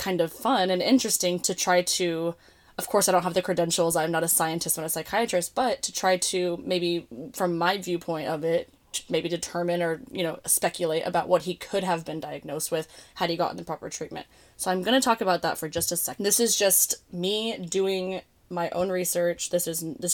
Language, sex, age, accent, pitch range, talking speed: English, female, 10-29, American, 170-190 Hz, 220 wpm